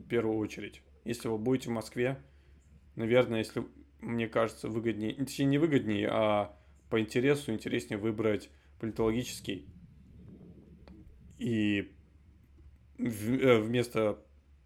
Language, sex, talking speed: Russian, male, 100 wpm